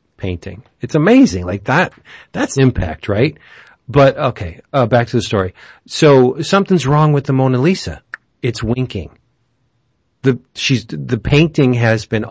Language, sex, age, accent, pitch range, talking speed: English, male, 40-59, American, 105-130 Hz, 145 wpm